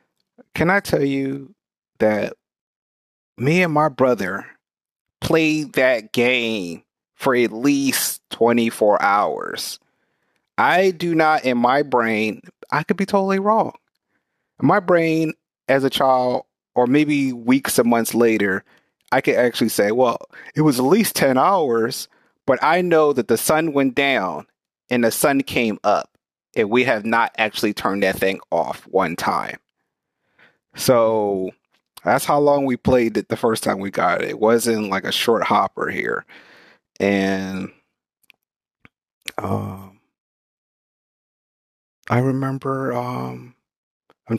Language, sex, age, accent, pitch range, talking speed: English, male, 30-49, American, 100-140 Hz, 135 wpm